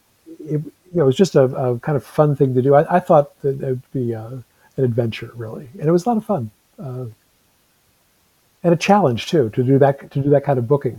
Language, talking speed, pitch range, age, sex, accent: English, 250 wpm, 120-140 Hz, 50-69, male, American